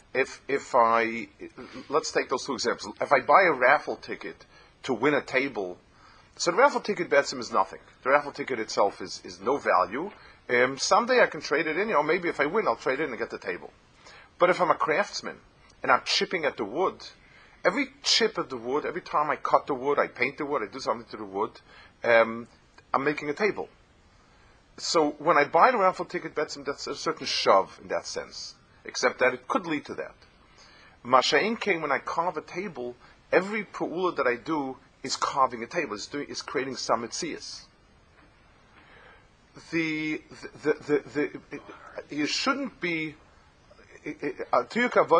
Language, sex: English, male